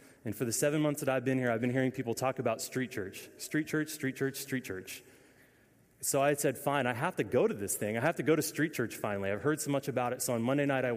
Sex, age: male, 30-49